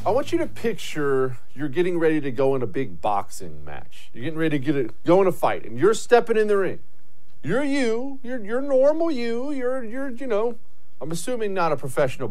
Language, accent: English, American